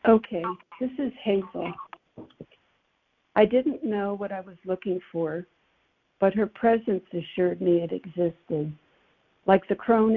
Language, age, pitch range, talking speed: English, 60-79, 175-215 Hz, 130 wpm